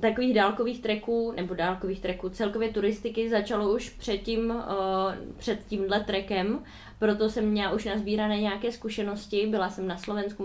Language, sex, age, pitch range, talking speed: Czech, female, 20-39, 195-225 Hz, 150 wpm